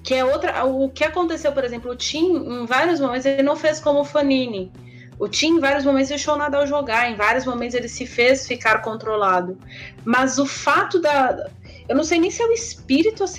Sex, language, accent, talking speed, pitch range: female, Portuguese, Brazilian, 225 wpm, 230-315 Hz